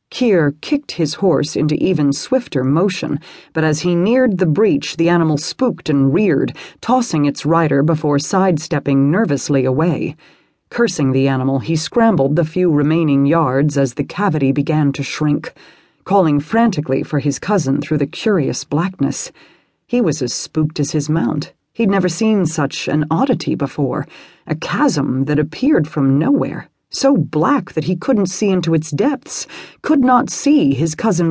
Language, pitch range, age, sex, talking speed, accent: English, 145-195 Hz, 40-59, female, 160 wpm, American